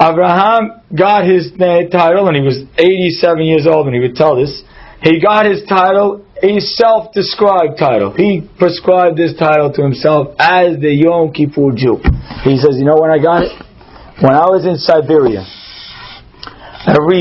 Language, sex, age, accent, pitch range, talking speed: English, male, 40-59, American, 135-180 Hz, 165 wpm